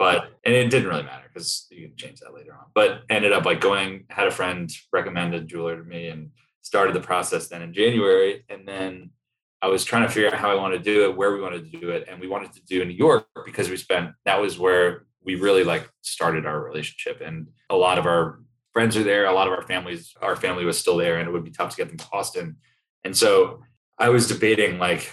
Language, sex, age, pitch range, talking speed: English, male, 20-39, 85-120 Hz, 255 wpm